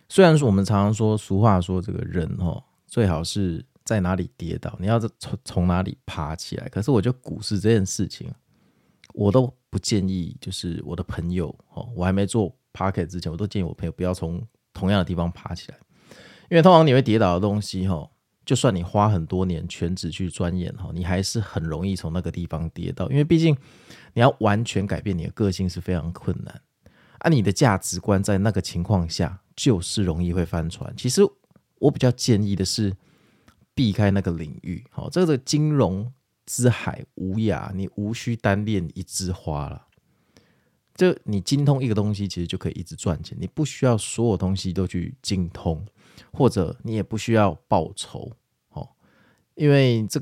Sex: male